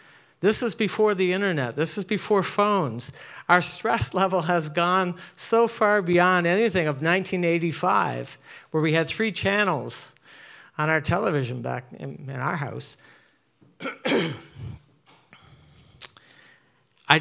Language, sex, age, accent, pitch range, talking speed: English, male, 50-69, American, 135-175 Hz, 120 wpm